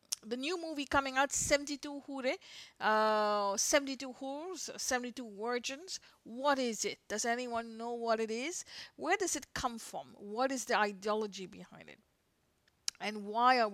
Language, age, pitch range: English, 50-69, 210-265 Hz